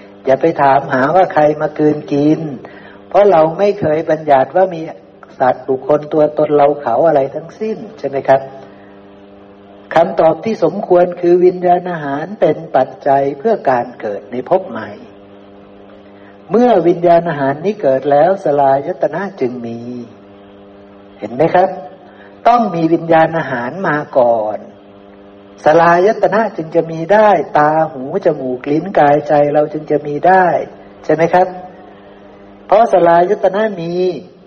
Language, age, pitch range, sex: Thai, 60-79, 120-175 Hz, male